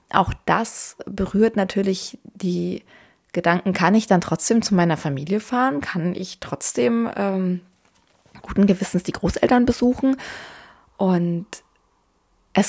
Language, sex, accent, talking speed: German, female, German, 120 wpm